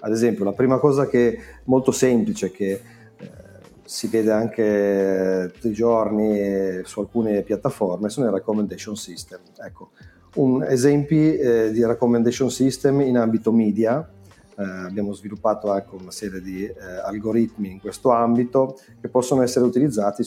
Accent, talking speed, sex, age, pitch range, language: native, 150 wpm, male, 40-59, 100-125 Hz, Italian